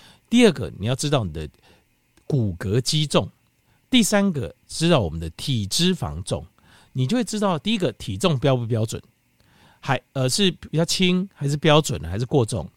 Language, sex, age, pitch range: Chinese, male, 50-69, 110-165 Hz